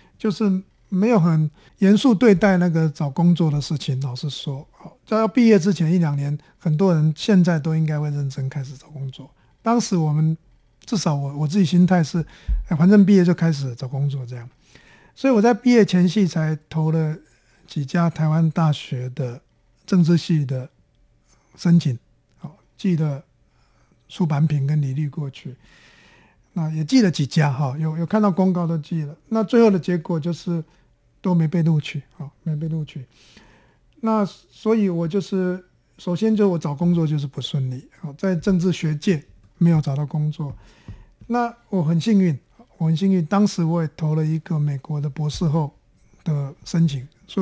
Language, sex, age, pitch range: Chinese, male, 50-69, 145-185 Hz